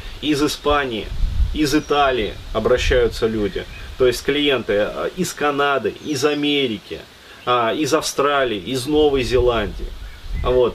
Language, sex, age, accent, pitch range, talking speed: Russian, male, 30-49, native, 100-135 Hz, 105 wpm